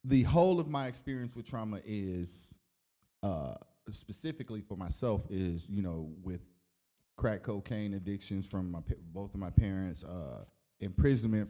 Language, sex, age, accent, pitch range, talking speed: English, male, 20-39, American, 90-110 Hz, 140 wpm